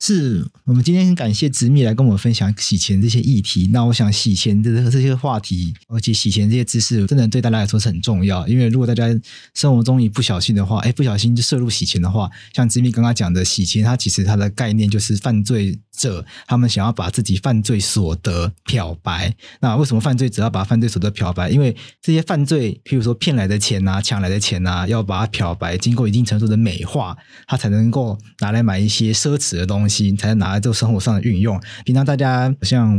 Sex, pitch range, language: male, 100-120 Hz, Chinese